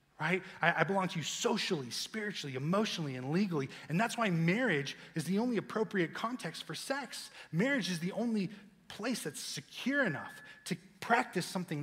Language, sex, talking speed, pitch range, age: English, male, 160 wpm, 155-195 Hz, 30-49